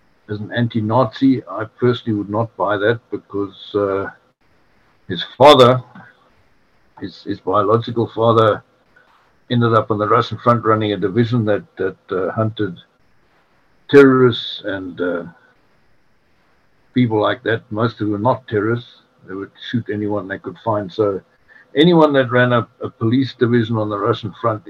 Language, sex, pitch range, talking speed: English, male, 105-125 Hz, 150 wpm